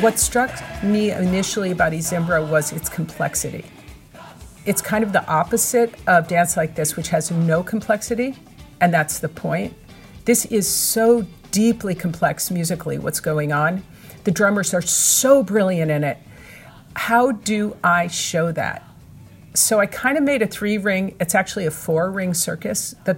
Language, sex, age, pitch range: English, female, 50-69, 170-215 Hz